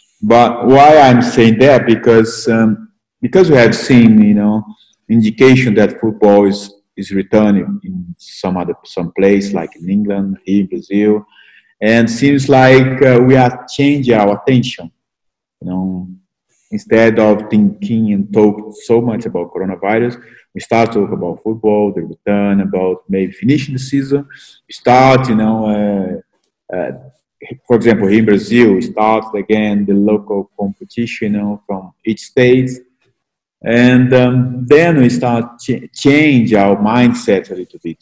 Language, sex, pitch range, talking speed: English, male, 105-125 Hz, 155 wpm